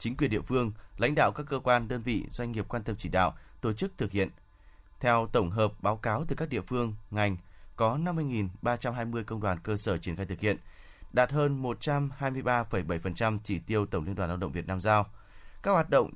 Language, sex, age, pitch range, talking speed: Vietnamese, male, 20-39, 100-130 Hz, 210 wpm